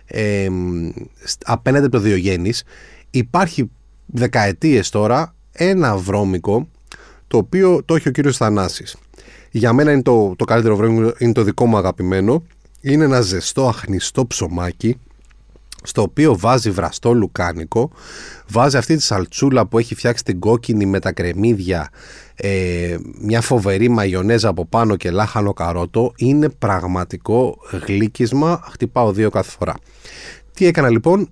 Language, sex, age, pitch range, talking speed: Greek, male, 30-49, 100-140 Hz, 130 wpm